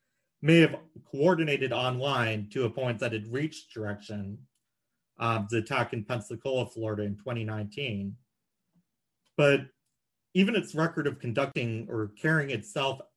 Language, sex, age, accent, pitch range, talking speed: English, male, 30-49, American, 110-150 Hz, 130 wpm